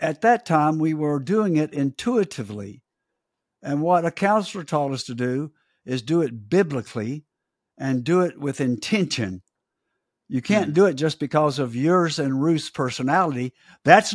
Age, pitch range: 60-79, 140-180 Hz